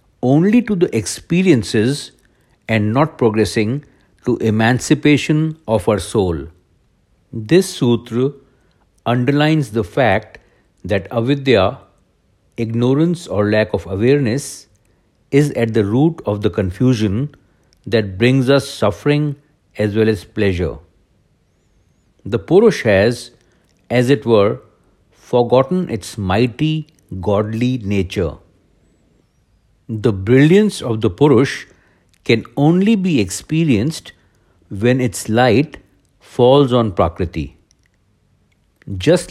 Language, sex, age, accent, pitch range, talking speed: English, male, 60-79, Indian, 105-145 Hz, 100 wpm